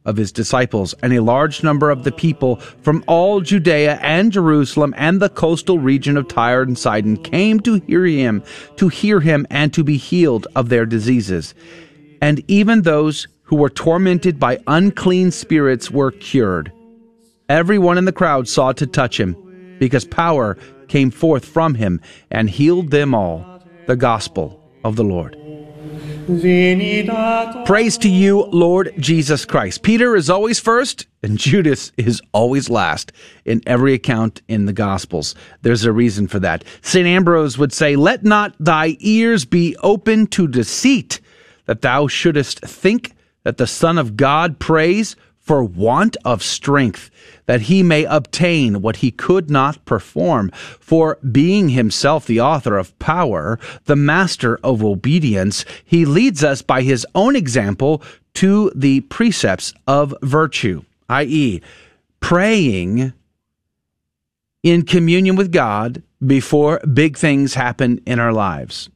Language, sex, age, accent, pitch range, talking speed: English, male, 40-59, American, 120-175 Hz, 145 wpm